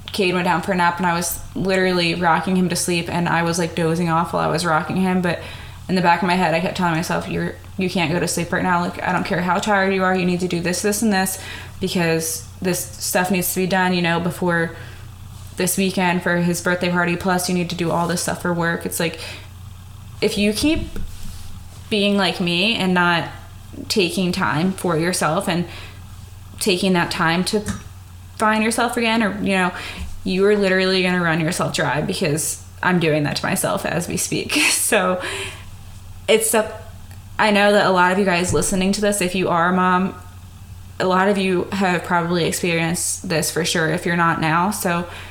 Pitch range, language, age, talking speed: 150-185 Hz, English, 20-39, 215 wpm